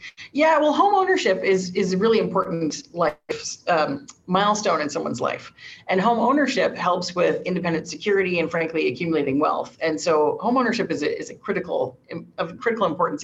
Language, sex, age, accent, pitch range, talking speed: English, female, 40-59, American, 165-210 Hz, 170 wpm